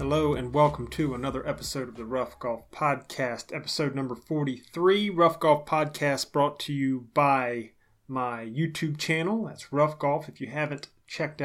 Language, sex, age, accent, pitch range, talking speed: English, male, 30-49, American, 125-155 Hz, 160 wpm